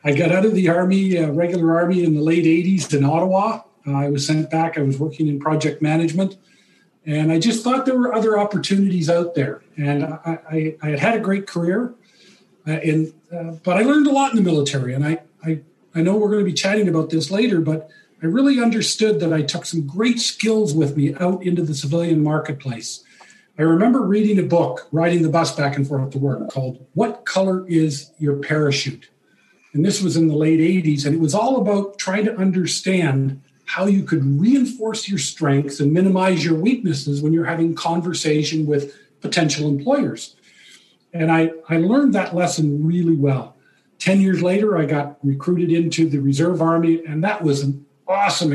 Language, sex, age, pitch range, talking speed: English, male, 40-59, 150-190 Hz, 200 wpm